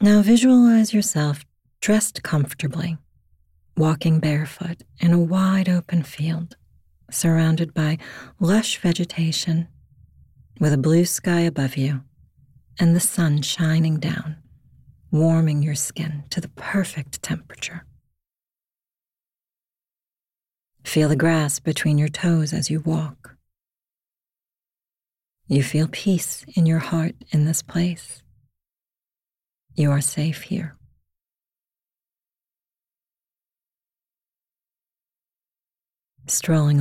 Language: English